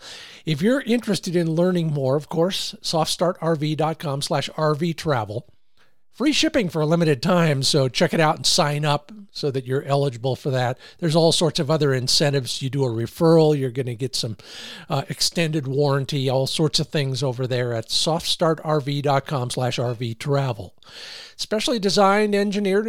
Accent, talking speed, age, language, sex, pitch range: American, 160 wpm, 50-69, English, male, 135-175 Hz